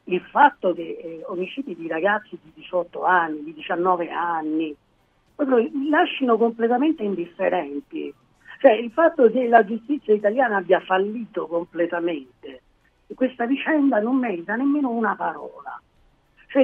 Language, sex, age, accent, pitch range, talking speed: Italian, female, 40-59, native, 170-260 Hz, 125 wpm